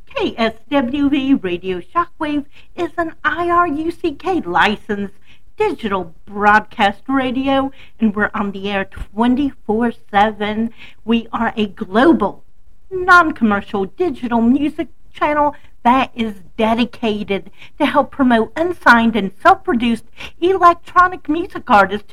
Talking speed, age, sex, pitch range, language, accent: 95 wpm, 50-69, female, 210-300 Hz, English, American